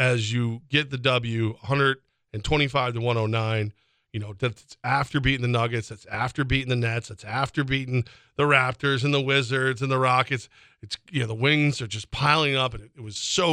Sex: male